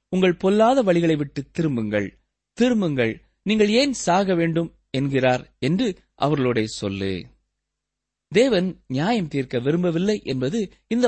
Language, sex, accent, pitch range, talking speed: Tamil, male, native, 125-195 Hz, 110 wpm